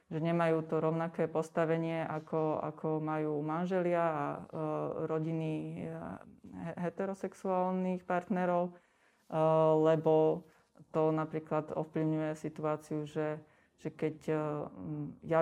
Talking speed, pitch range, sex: 100 wpm, 155-170 Hz, female